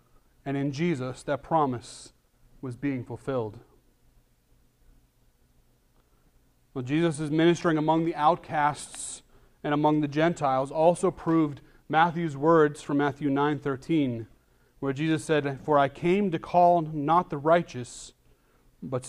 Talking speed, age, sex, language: 115 wpm, 30-49, male, English